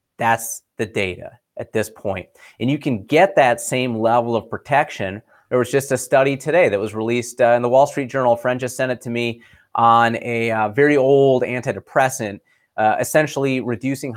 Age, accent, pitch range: 30-49, American, 110-135 Hz